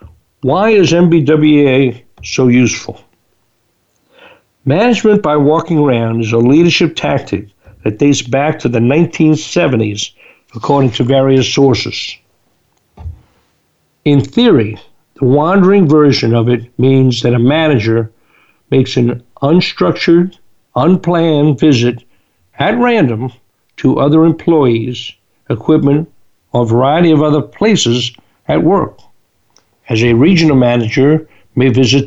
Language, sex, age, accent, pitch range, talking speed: English, male, 60-79, American, 115-155 Hz, 110 wpm